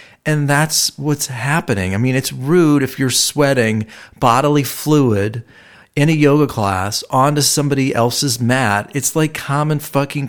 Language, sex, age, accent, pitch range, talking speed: English, male, 40-59, American, 115-155 Hz, 145 wpm